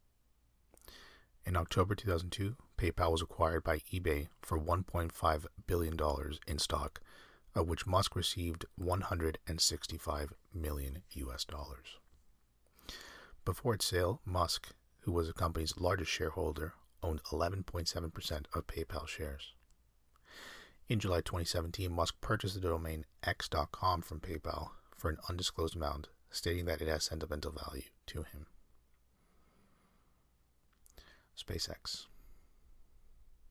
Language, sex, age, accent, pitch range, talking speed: English, male, 30-49, American, 70-90 Hz, 105 wpm